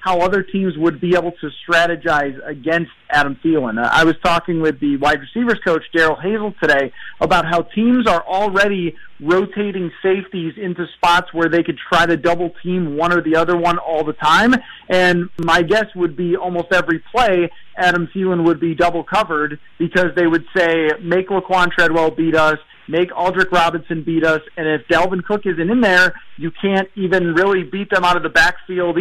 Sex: male